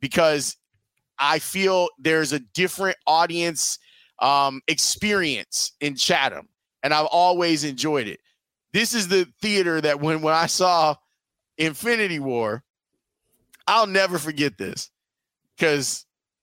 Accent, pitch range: American, 150-195 Hz